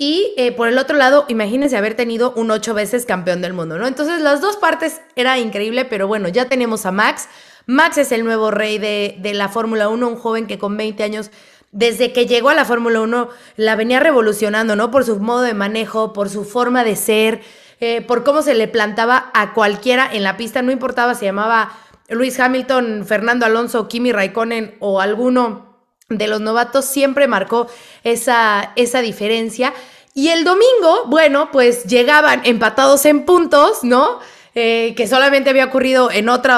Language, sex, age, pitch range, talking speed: Spanish, female, 20-39, 215-260 Hz, 185 wpm